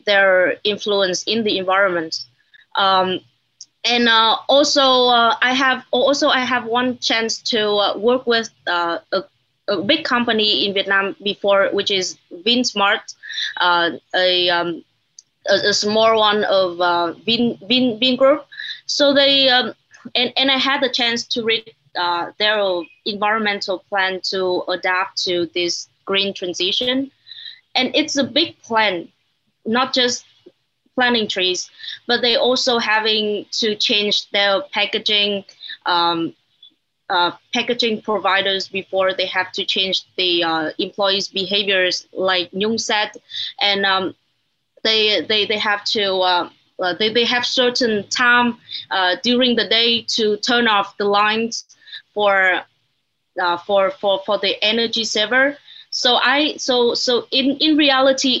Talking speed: 140 wpm